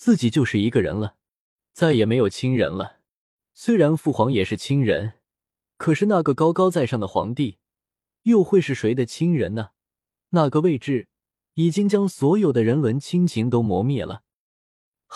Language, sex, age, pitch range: Chinese, male, 20-39, 105-160 Hz